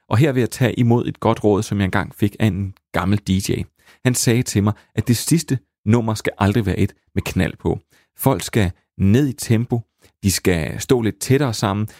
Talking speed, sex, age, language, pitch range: 215 wpm, male, 30-49, Danish, 95-120 Hz